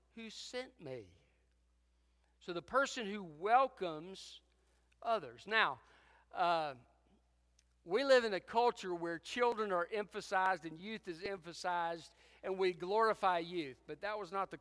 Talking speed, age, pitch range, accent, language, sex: 135 wpm, 50-69, 135-190 Hz, American, English, male